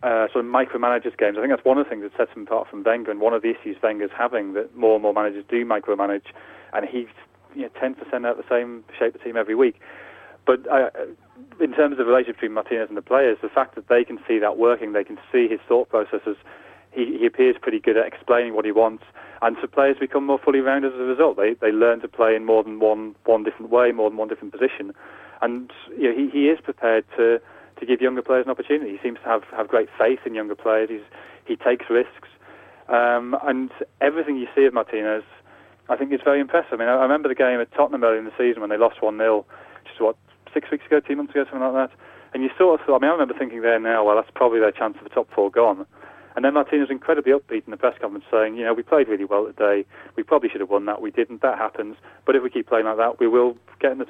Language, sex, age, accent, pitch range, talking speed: English, male, 30-49, British, 110-140 Hz, 265 wpm